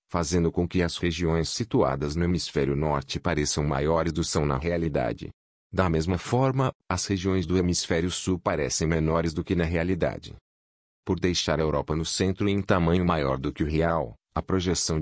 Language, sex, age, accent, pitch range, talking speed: Portuguese, male, 40-59, Brazilian, 75-90 Hz, 180 wpm